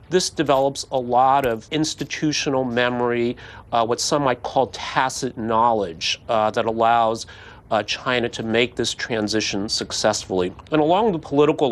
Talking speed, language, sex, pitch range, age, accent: 145 wpm, English, male, 115-145 Hz, 40-59, American